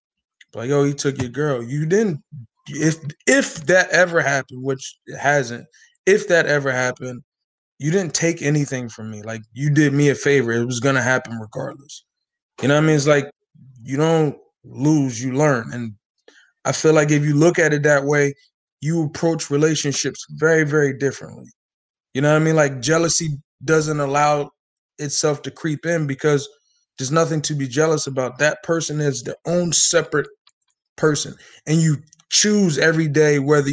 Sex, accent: male, American